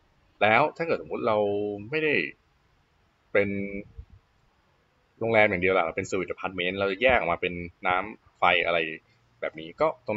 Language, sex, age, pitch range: Thai, male, 20-39, 90-120 Hz